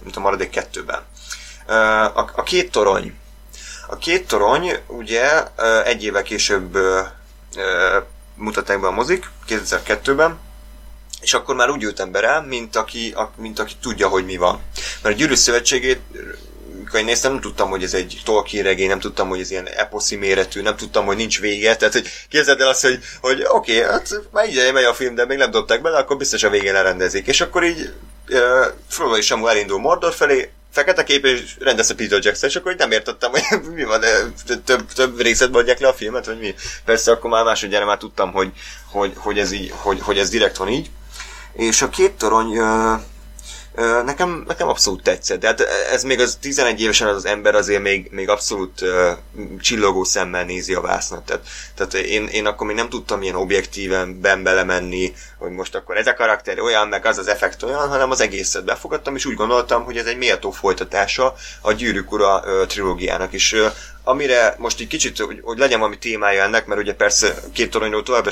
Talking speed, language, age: 190 wpm, Hungarian, 30-49